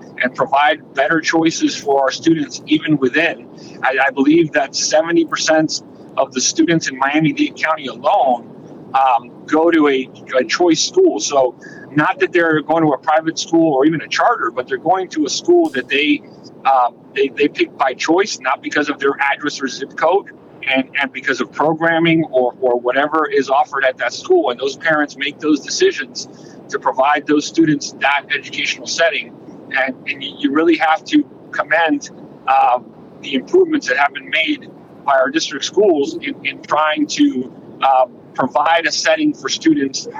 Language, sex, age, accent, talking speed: English, male, 50-69, American, 175 wpm